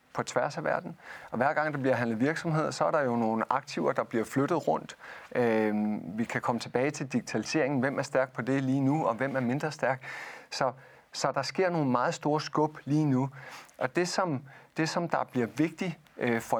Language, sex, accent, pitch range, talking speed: Danish, male, native, 120-150 Hz, 205 wpm